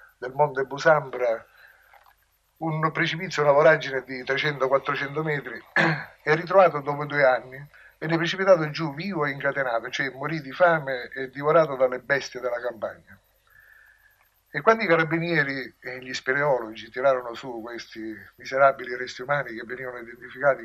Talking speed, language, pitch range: 135 wpm, Italian, 130-155 Hz